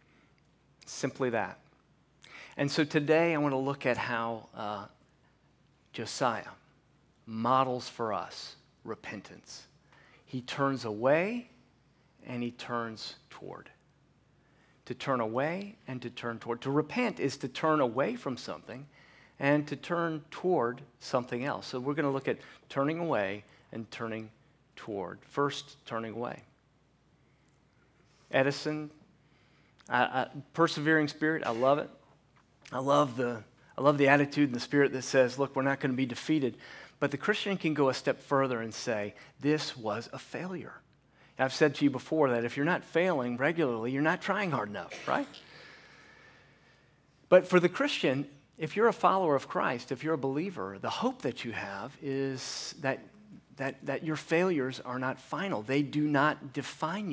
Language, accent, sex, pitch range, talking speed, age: English, American, male, 125-150 Hz, 155 wpm, 40-59